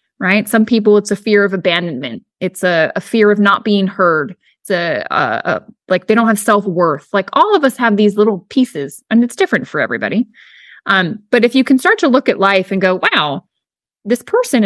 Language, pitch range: English, 190-245 Hz